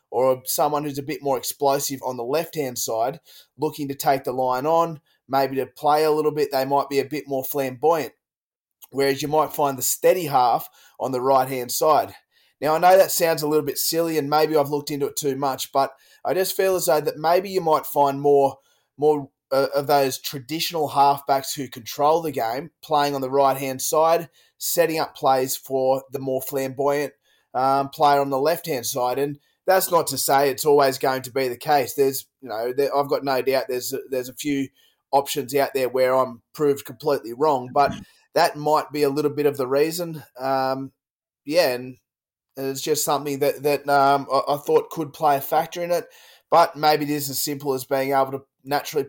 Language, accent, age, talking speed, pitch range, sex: English, Australian, 20-39, 210 wpm, 135-150 Hz, male